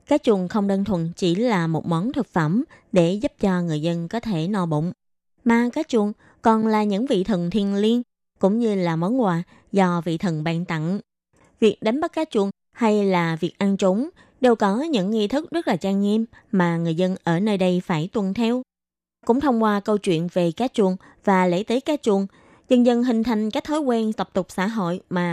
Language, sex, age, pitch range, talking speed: Vietnamese, female, 20-39, 180-235 Hz, 220 wpm